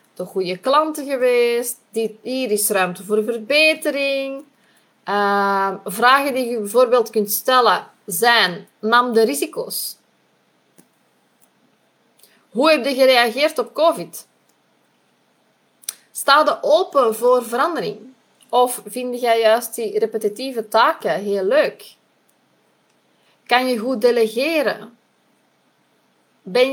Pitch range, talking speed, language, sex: 220-280 Hz, 105 wpm, Dutch, female